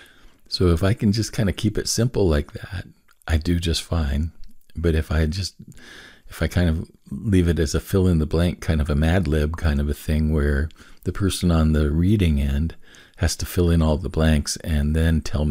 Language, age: English, 50-69